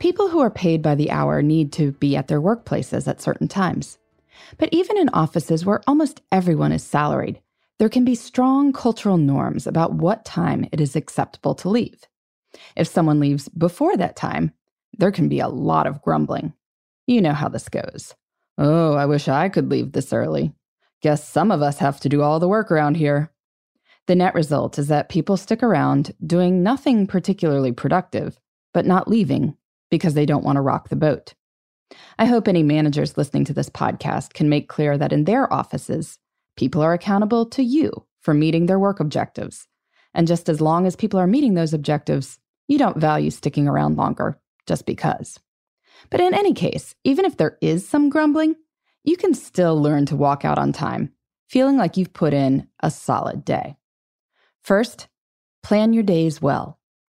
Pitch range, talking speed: 145-225 Hz, 185 wpm